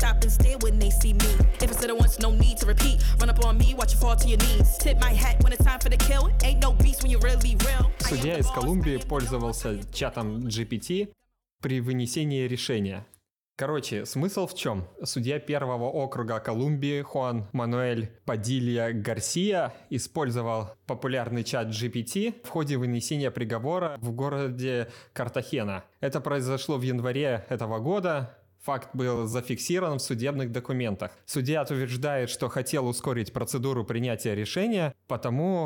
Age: 20-39